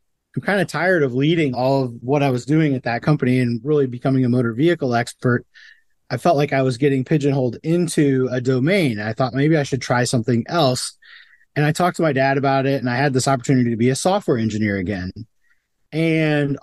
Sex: male